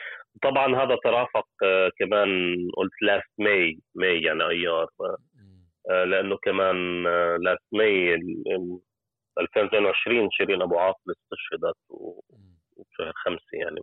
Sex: male